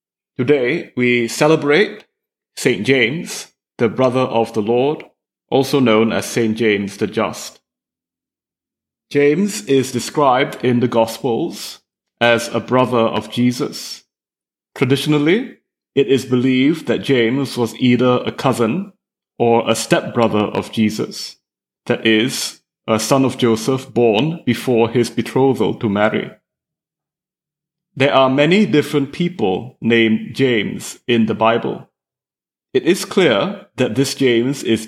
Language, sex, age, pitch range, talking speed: English, male, 30-49, 115-135 Hz, 125 wpm